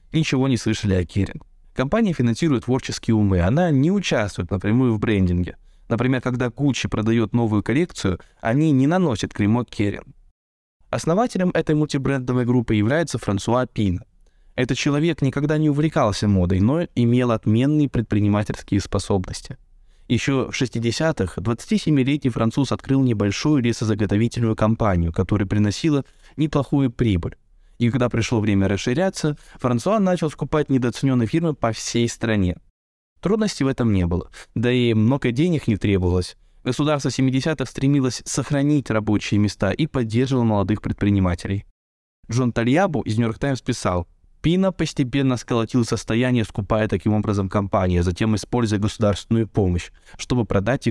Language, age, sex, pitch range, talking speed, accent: Russian, 20-39, male, 100-135 Hz, 130 wpm, native